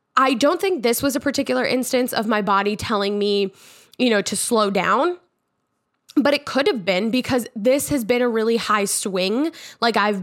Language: English